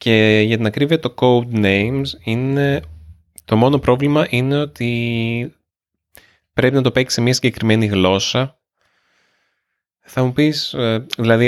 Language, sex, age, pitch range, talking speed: Greek, male, 20-39, 100-135 Hz, 125 wpm